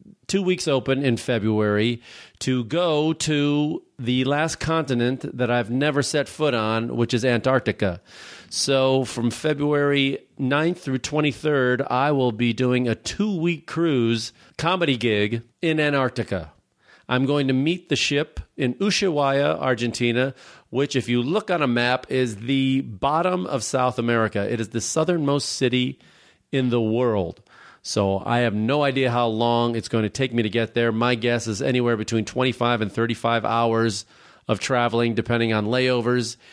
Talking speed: 160 wpm